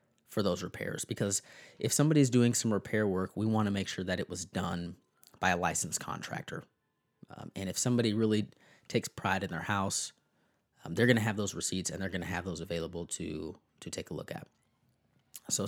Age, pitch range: 20-39, 95-120 Hz